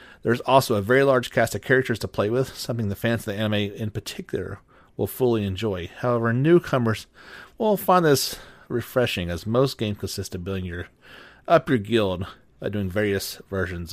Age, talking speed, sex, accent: 40-59, 185 wpm, male, American